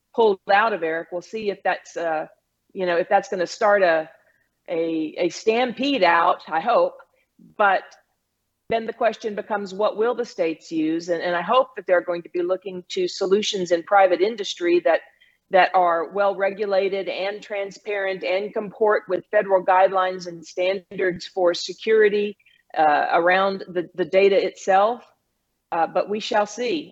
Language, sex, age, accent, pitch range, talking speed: English, female, 40-59, American, 175-210 Hz, 165 wpm